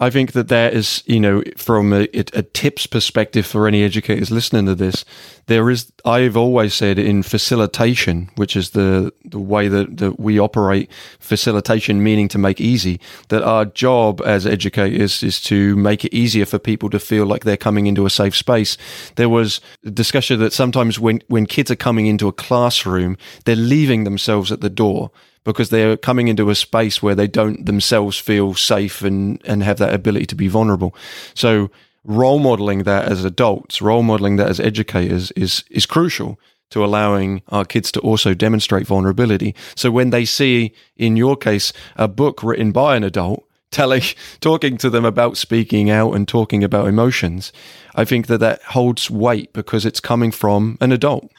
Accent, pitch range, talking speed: British, 100-120 Hz, 185 wpm